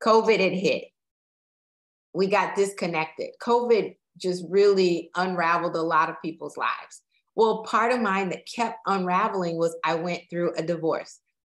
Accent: American